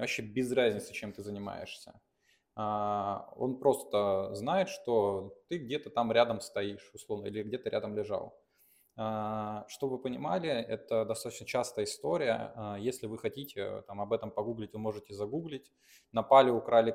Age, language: 20-39, Russian